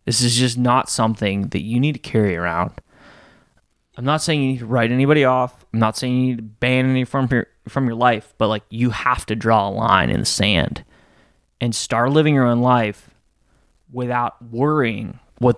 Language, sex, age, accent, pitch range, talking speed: English, male, 20-39, American, 110-130 Hz, 205 wpm